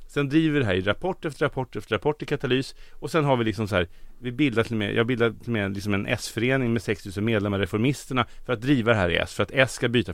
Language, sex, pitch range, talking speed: Swedish, male, 110-150 Hz, 270 wpm